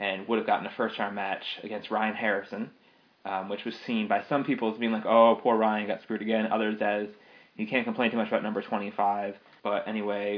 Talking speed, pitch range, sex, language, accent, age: 220 wpm, 100-115 Hz, male, English, American, 20-39